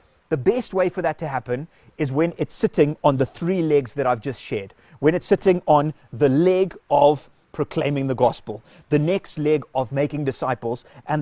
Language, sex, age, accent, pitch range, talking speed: English, male, 30-49, British, 130-165 Hz, 195 wpm